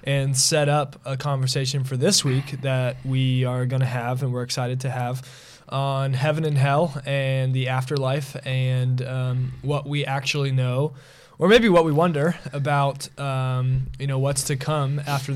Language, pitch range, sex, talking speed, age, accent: English, 130-140 Hz, male, 175 wpm, 20-39, American